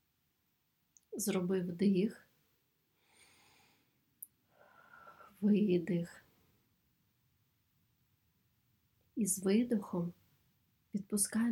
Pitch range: 120-195 Hz